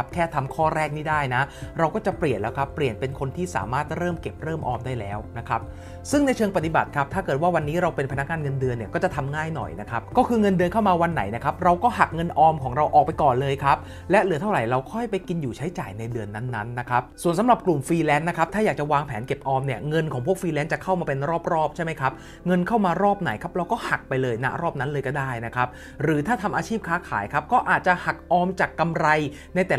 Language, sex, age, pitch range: English, male, 30-49, 130-180 Hz